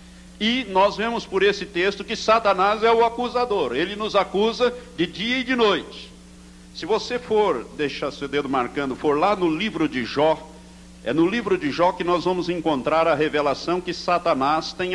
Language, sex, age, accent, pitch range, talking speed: Portuguese, male, 60-79, Brazilian, 130-190 Hz, 185 wpm